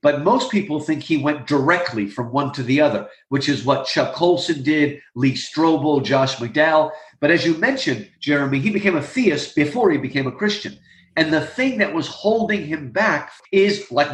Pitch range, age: 140-205 Hz, 50-69